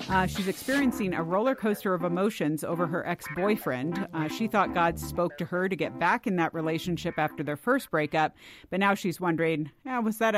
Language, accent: English, American